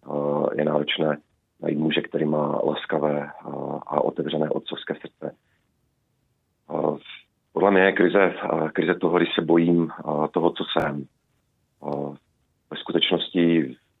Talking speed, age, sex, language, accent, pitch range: 105 wpm, 40-59, male, Czech, native, 75-85 Hz